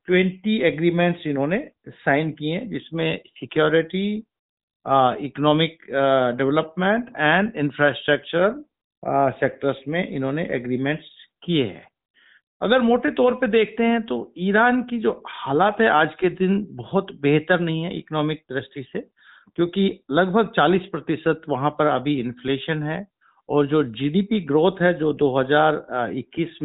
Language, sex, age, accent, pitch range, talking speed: Hindi, male, 50-69, native, 145-190 Hz, 130 wpm